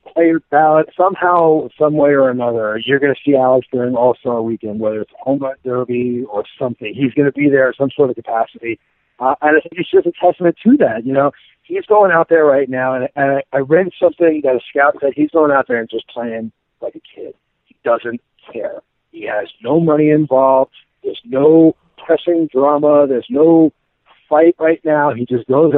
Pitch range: 130-170 Hz